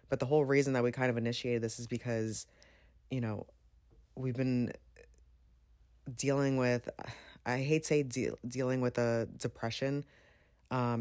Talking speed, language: 145 wpm, English